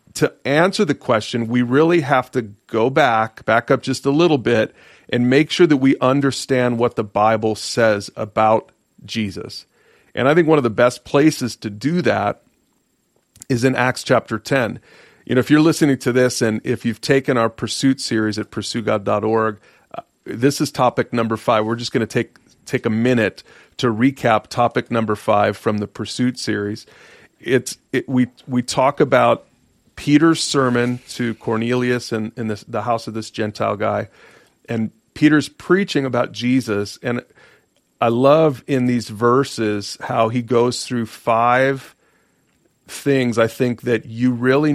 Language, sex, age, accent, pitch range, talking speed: English, male, 40-59, American, 110-130 Hz, 165 wpm